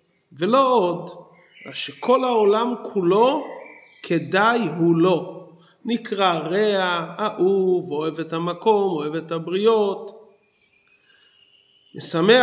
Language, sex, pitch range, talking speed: Hebrew, male, 180-235 Hz, 90 wpm